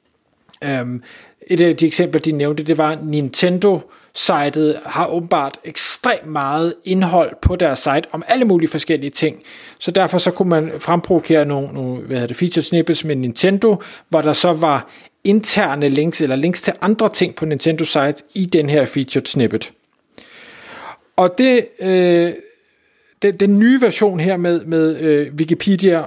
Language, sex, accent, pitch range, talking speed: Danish, male, native, 150-185 Hz, 150 wpm